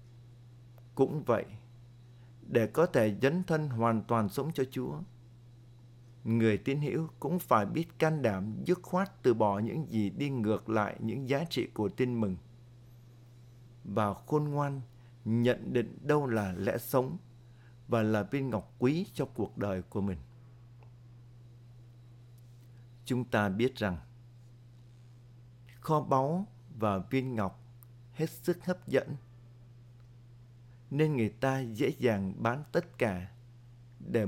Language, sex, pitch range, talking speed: Vietnamese, male, 115-130 Hz, 135 wpm